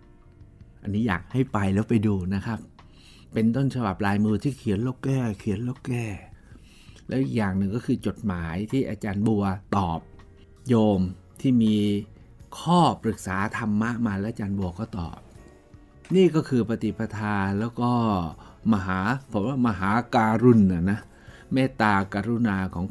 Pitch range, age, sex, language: 95-115 Hz, 60-79, male, Thai